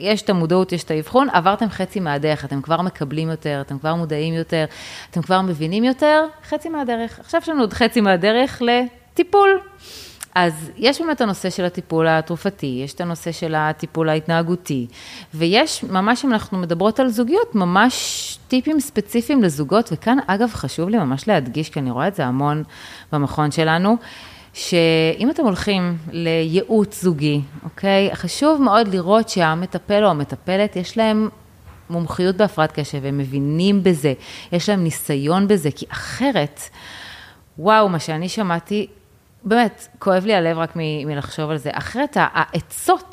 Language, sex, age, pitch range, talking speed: Hebrew, female, 30-49, 155-225 Hz, 150 wpm